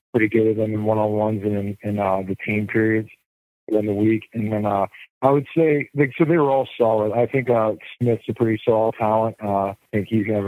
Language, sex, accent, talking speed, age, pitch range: English, male, American, 245 wpm, 40-59, 100-110 Hz